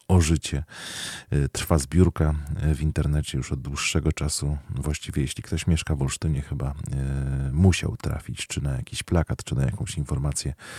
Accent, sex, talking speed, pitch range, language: native, male, 145 wpm, 70-85 Hz, Polish